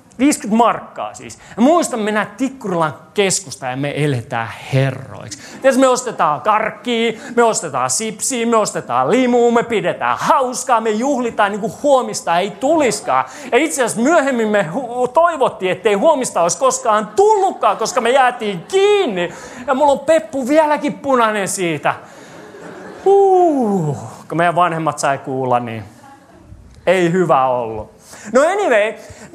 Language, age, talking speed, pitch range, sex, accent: Finnish, 30-49, 135 wpm, 170-275 Hz, male, native